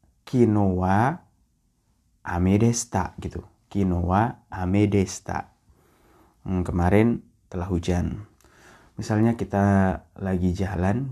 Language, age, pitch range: Indonesian, 20-39, 95-110 Hz